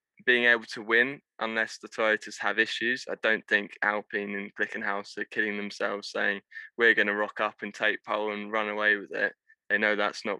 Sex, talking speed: male, 210 wpm